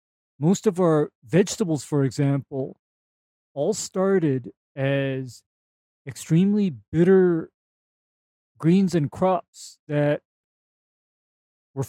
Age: 40-59